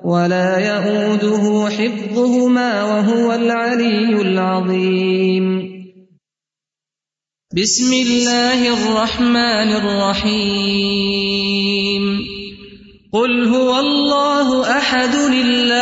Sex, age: male, 30-49